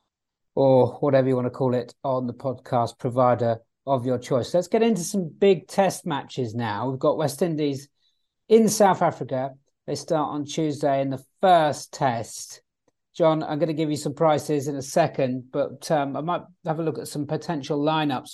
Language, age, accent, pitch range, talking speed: English, 40-59, British, 130-165 Hz, 195 wpm